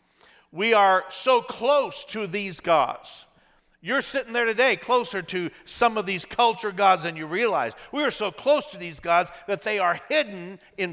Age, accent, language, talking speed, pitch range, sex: 50-69, American, English, 180 wpm, 135-205 Hz, male